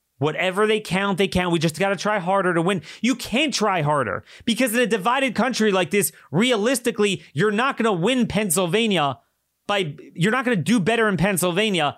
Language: English